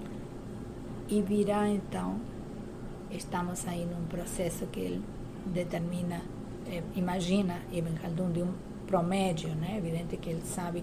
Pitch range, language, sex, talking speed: 175-205 Hz, Portuguese, female, 120 wpm